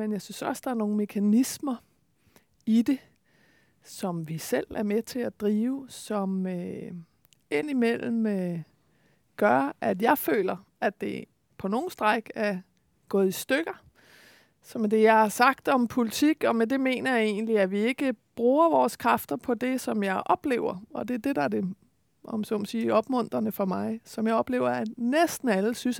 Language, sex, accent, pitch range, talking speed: Danish, female, native, 205-255 Hz, 180 wpm